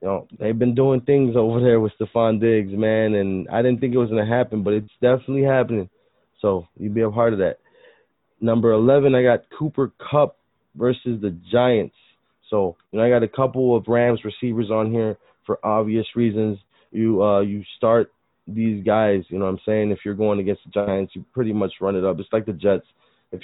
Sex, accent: male, American